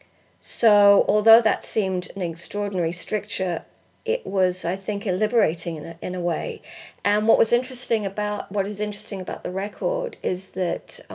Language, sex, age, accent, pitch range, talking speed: English, female, 40-59, British, 175-215 Hz, 160 wpm